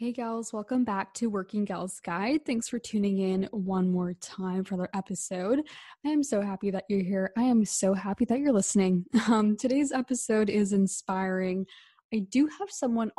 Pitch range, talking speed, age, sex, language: 190-235 Hz, 185 wpm, 10-29, female, English